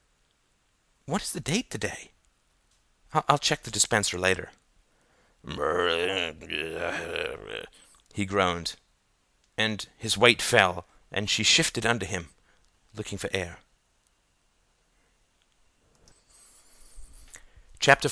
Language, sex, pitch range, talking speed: English, male, 100-130 Hz, 85 wpm